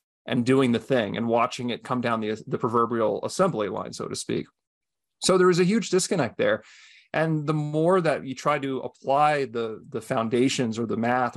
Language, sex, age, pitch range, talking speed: English, male, 30-49, 120-140 Hz, 200 wpm